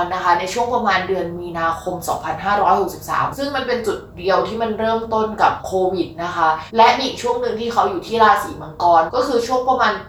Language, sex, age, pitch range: Thai, female, 20-39, 175-230 Hz